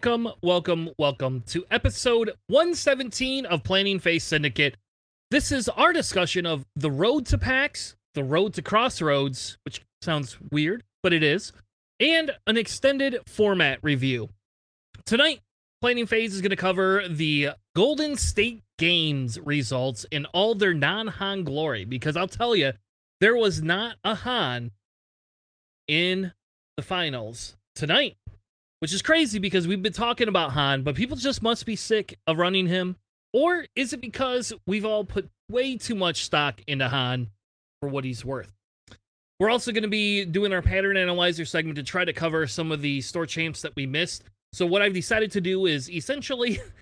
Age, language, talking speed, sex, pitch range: 30-49, English, 165 wpm, male, 140-215 Hz